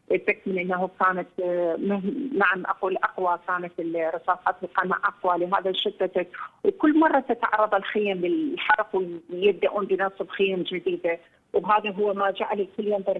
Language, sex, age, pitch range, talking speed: Arabic, female, 40-59, 180-205 Hz, 125 wpm